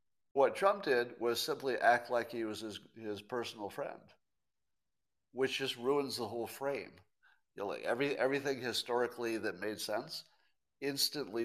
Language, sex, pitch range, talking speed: English, male, 105-135 Hz, 150 wpm